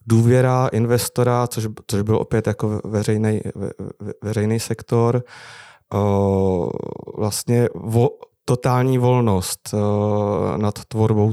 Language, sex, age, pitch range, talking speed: Czech, male, 30-49, 105-115 Hz, 100 wpm